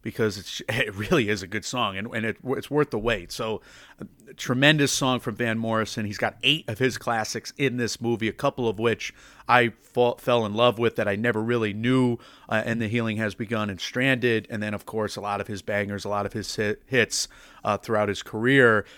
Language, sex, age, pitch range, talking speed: English, male, 30-49, 110-135 Hz, 230 wpm